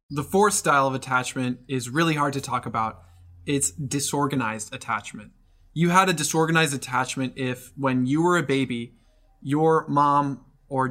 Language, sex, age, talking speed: English, male, 20-39, 155 wpm